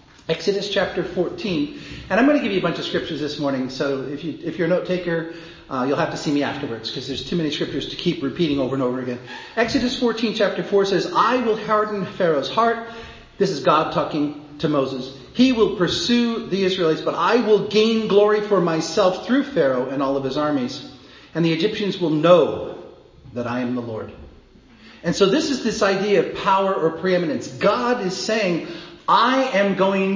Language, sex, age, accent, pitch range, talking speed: English, male, 40-59, American, 155-215 Hz, 205 wpm